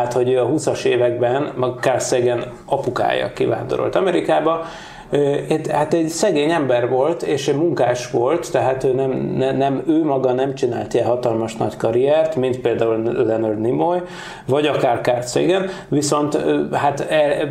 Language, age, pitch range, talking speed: Hungarian, 30-49, 125-150 Hz, 140 wpm